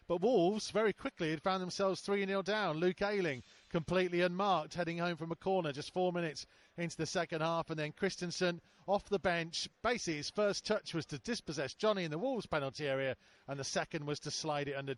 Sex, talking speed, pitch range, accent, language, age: male, 210 wpm, 145-195 Hz, British, English, 40-59